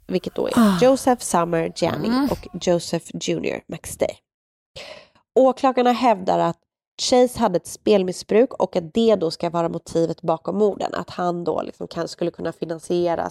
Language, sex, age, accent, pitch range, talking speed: Swedish, female, 20-39, native, 170-200 Hz, 160 wpm